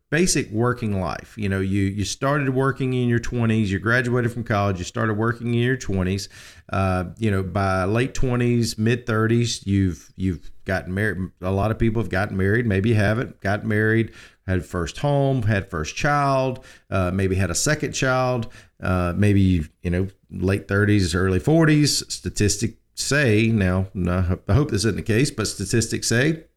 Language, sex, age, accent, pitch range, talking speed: English, male, 40-59, American, 100-135 Hz, 180 wpm